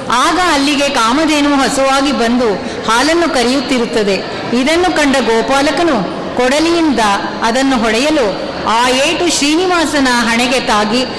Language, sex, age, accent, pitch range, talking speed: Kannada, female, 30-49, native, 240-300 Hz, 90 wpm